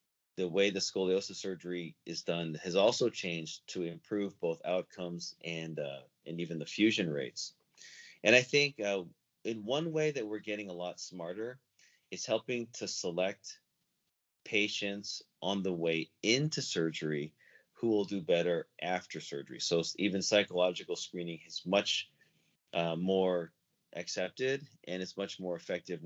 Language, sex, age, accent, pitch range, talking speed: English, male, 30-49, American, 85-105 Hz, 145 wpm